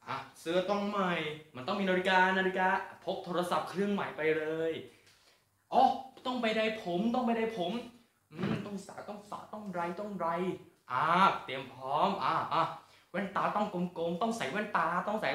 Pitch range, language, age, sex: 165-230 Hz, Thai, 20-39, male